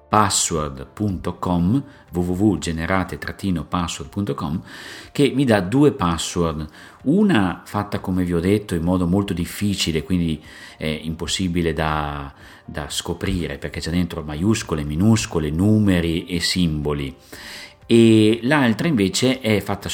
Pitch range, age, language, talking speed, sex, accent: 80-100 Hz, 40-59, Italian, 110 wpm, male, native